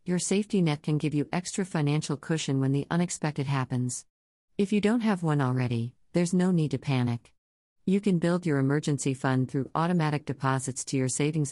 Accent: American